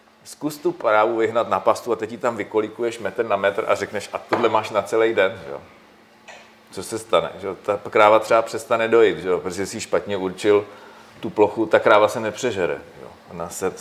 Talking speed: 200 wpm